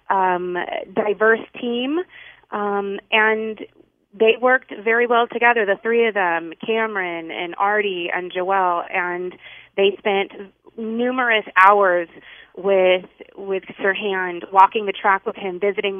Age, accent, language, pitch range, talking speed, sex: 30-49, American, English, 190-220 Hz, 130 wpm, female